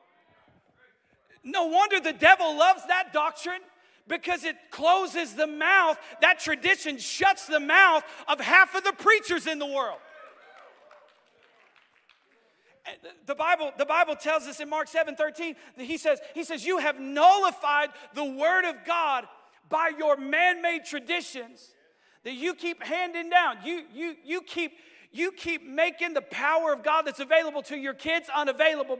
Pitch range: 290-335 Hz